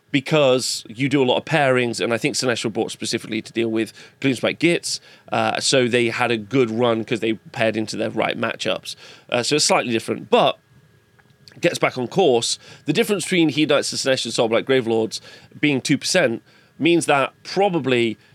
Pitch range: 115-150 Hz